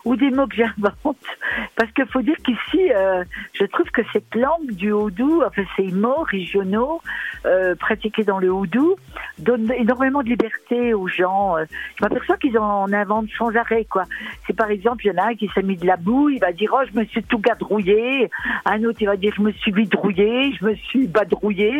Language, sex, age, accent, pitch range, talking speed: French, female, 50-69, French, 200-245 Hz, 230 wpm